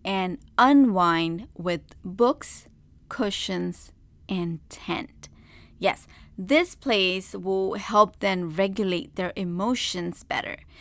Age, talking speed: 20-39, 95 wpm